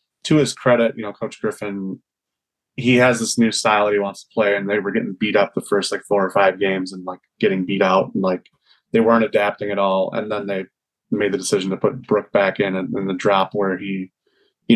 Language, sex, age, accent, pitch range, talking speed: English, male, 20-39, American, 95-115 Hz, 240 wpm